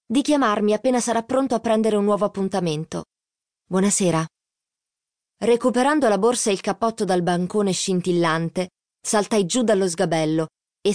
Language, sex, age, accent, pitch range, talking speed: Italian, female, 20-39, native, 170-210 Hz, 135 wpm